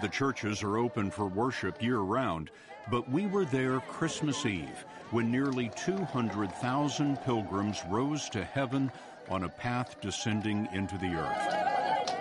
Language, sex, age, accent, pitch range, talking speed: English, male, 60-79, American, 100-130 Hz, 135 wpm